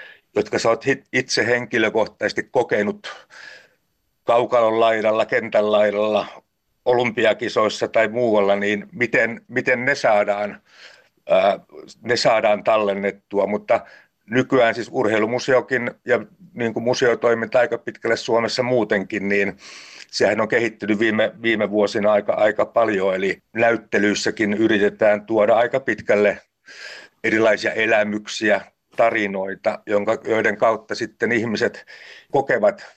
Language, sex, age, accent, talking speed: Finnish, male, 60-79, native, 105 wpm